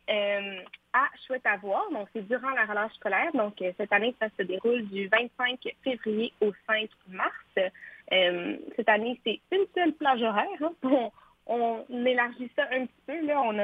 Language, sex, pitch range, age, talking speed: French, female, 195-255 Hz, 20-39, 180 wpm